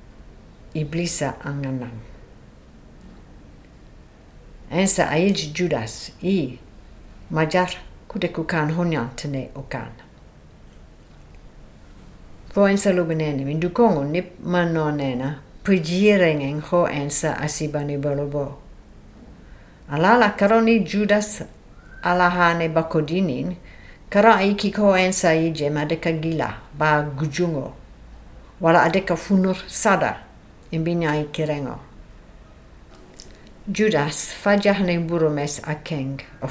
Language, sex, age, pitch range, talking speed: French, female, 60-79, 130-180 Hz, 55 wpm